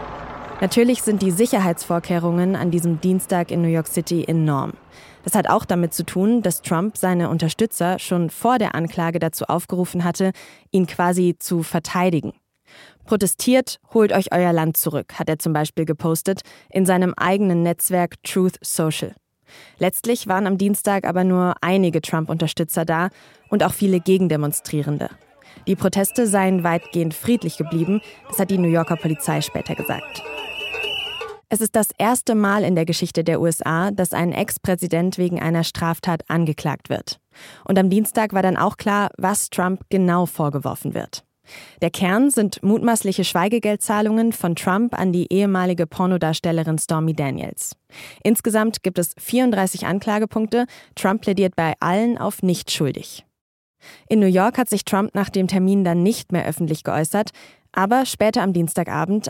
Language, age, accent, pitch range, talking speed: German, 20-39, German, 165-200 Hz, 150 wpm